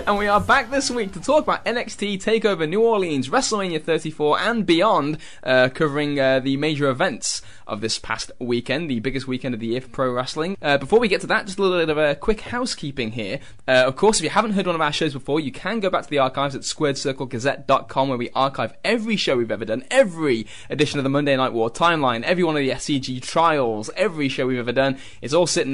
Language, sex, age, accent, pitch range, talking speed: English, male, 10-29, British, 120-170 Hz, 240 wpm